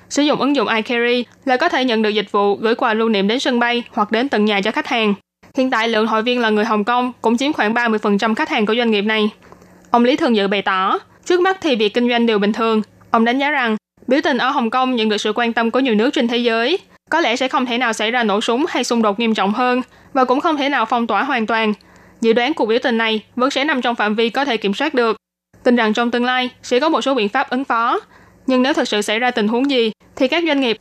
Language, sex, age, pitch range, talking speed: Vietnamese, female, 20-39, 220-260 Hz, 290 wpm